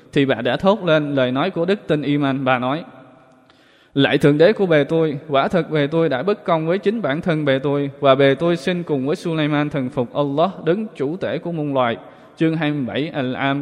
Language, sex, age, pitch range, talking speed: Vietnamese, male, 20-39, 135-155 Hz, 225 wpm